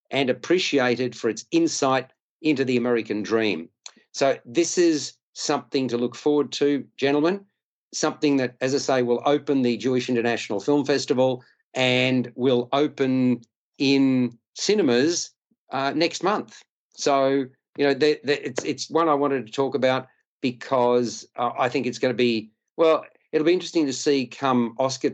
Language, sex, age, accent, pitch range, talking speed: English, male, 50-69, Australian, 120-145 Hz, 160 wpm